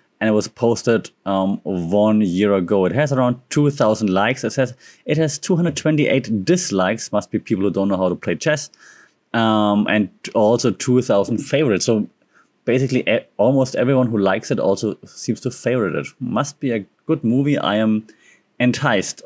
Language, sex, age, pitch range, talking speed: English, male, 30-49, 100-130 Hz, 170 wpm